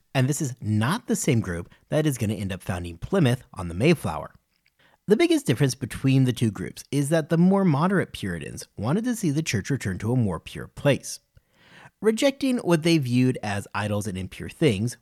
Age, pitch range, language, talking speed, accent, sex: 40-59, 100-165 Hz, English, 205 wpm, American, male